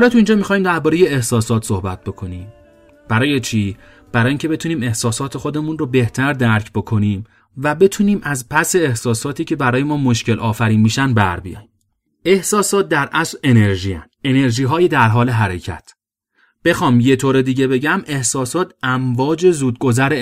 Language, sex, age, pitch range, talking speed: Persian, male, 30-49, 115-150 Hz, 140 wpm